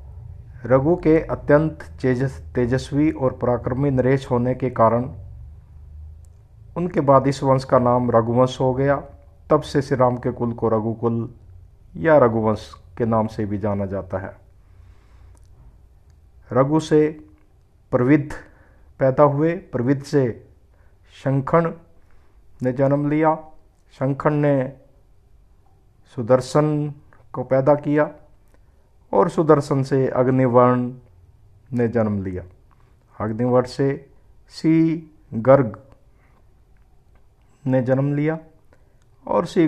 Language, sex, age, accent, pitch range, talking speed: Hindi, male, 50-69, native, 105-140 Hz, 105 wpm